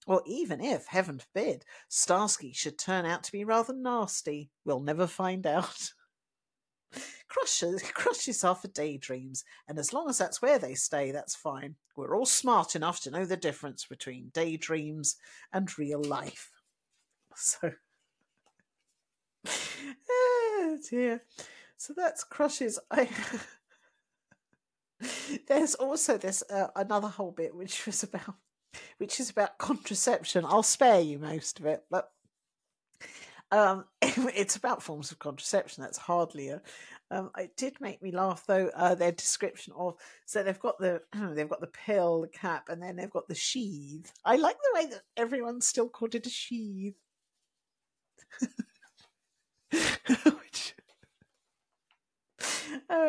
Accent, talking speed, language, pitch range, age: British, 140 wpm, English, 165-250 Hz, 50-69